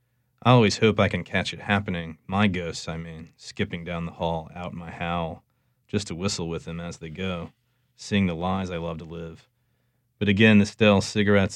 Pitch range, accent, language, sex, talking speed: 85-105 Hz, American, English, male, 210 wpm